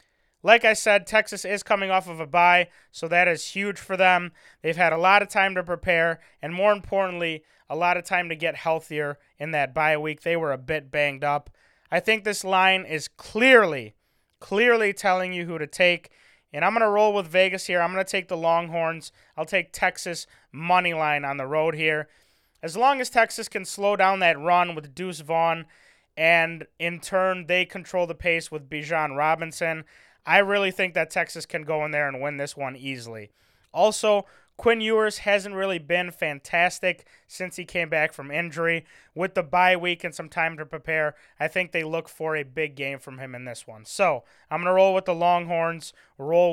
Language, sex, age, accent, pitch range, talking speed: English, male, 20-39, American, 155-190 Hz, 205 wpm